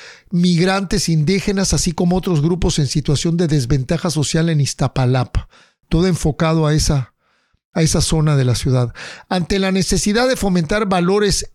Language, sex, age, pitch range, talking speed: English, male, 50-69, 150-185 Hz, 150 wpm